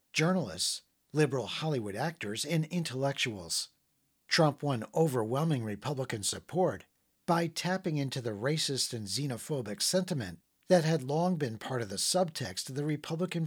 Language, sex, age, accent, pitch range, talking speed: English, male, 50-69, American, 115-160 Hz, 135 wpm